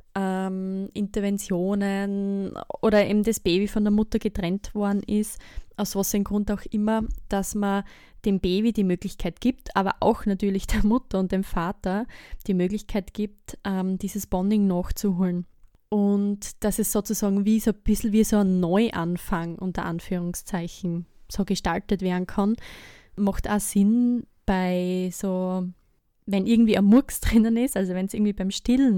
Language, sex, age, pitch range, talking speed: German, female, 20-39, 185-215 Hz, 150 wpm